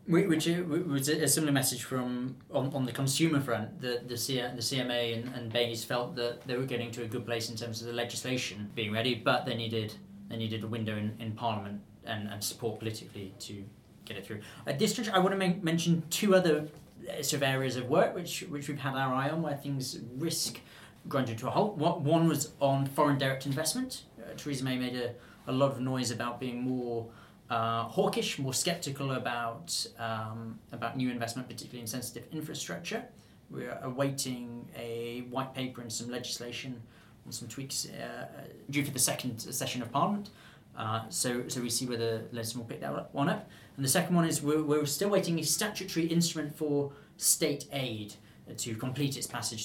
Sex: male